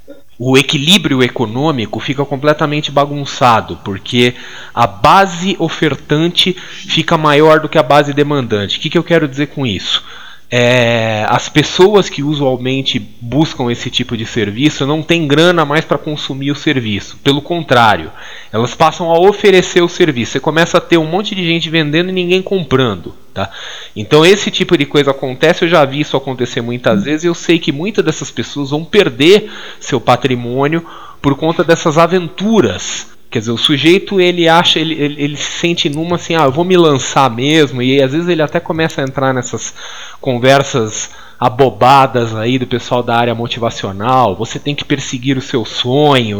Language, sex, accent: Portuguese, male, Brazilian